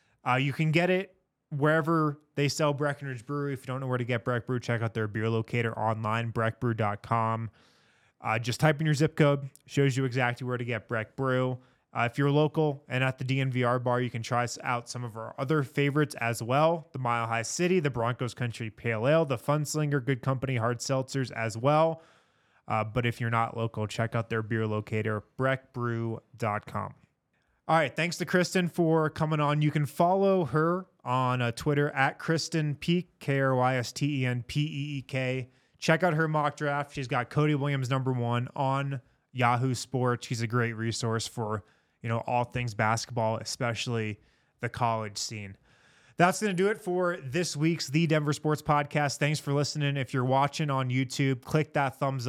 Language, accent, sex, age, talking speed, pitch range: English, American, male, 20-39, 195 wpm, 120-150 Hz